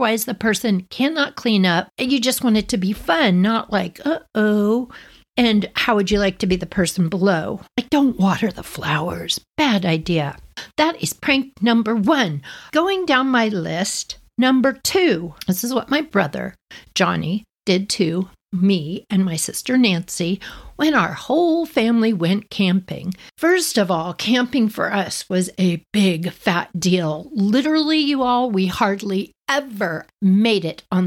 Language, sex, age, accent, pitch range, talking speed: English, female, 60-79, American, 190-250 Hz, 160 wpm